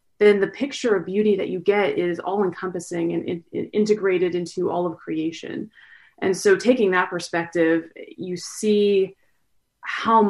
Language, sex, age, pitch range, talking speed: English, female, 20-39, 180-210 Hz, 145 wpm